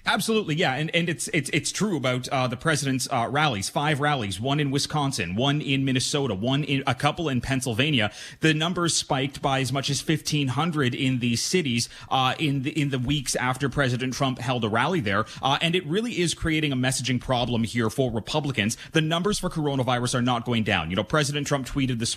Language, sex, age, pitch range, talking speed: English, male, 30-49, 120-145 Hz, 215 wpm